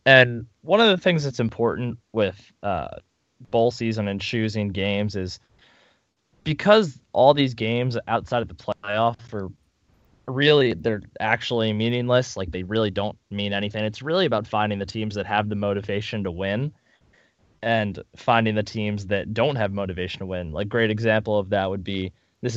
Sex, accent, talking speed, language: male, American, 170 wpm, English